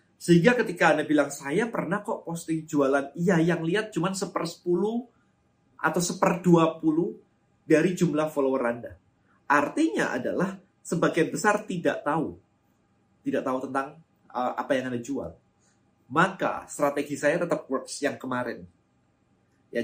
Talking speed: 135 wpm